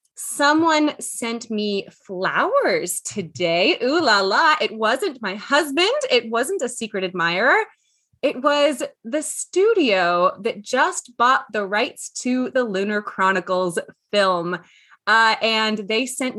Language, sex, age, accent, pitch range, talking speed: English, female, 20-39, American, 220-335 Hz, 130 wpm